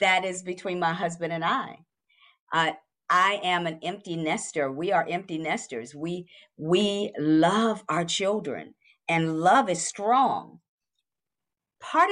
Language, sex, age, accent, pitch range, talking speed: English, female, 50-69, American, 170-230 Hz, 135 wpm